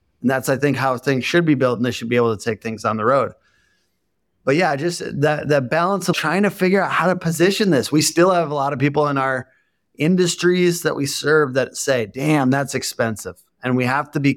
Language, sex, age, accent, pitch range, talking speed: English, male, 30-49, American, 130-165 Hz, 240 wpm